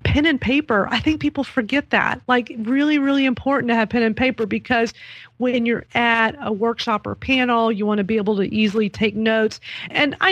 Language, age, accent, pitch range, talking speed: English, 30-49, American, 205-240 Hz, 210 wpm